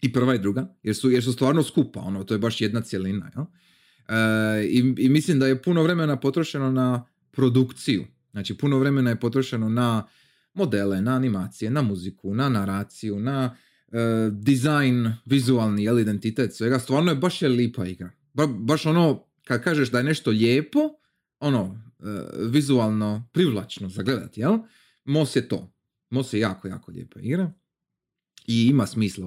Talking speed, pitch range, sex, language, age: 160 wpm, 110-145 Hz, male, Croatian, 30-49